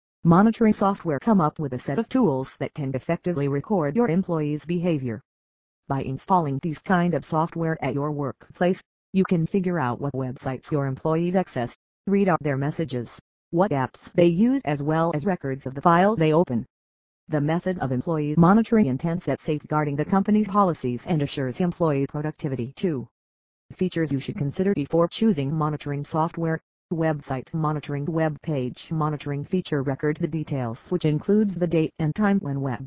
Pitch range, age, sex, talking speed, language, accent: 140-180 Hz, 40-59, female, 170 wpm, English, American